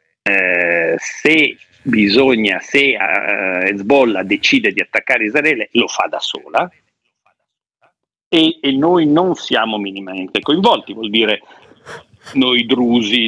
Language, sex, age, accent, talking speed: Italian, male, 50-69, native, 115 wpm